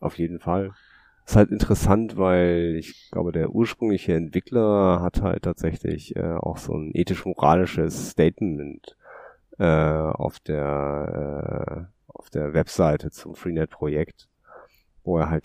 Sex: male